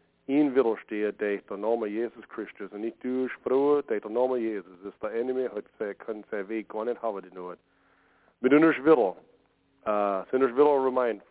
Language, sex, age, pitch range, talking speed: English, male, 40-59, 105-125 Hz, 120 wpm